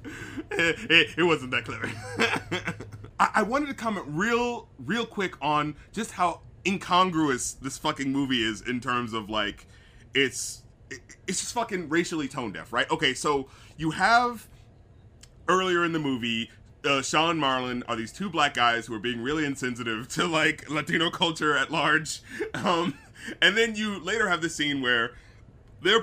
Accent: American